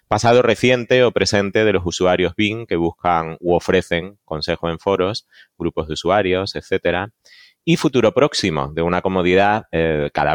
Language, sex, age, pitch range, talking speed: Spanish, male, 30-49, 85-105 Hz, 155 wpm